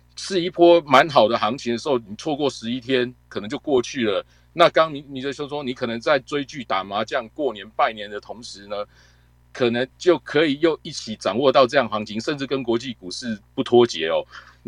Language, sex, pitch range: Chinese, male, 105-135 Hz